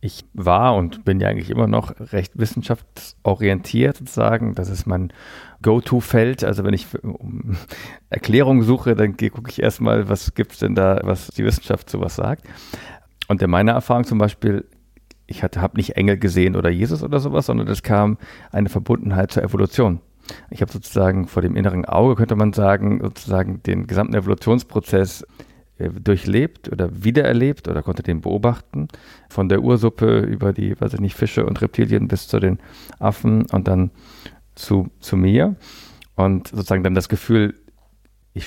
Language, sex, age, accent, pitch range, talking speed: German, male, 50-69, German, 95-115 Hz, 165 wpm